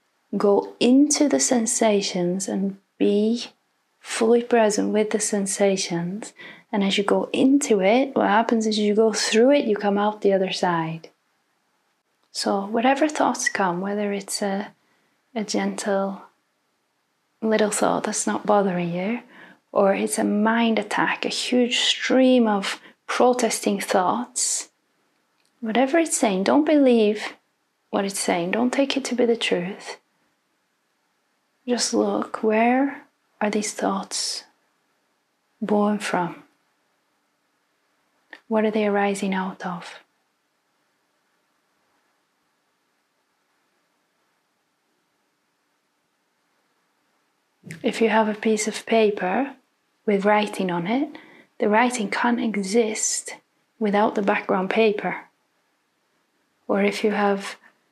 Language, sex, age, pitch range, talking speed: English, female, 30-49, 200-240 Hz, 110 wpm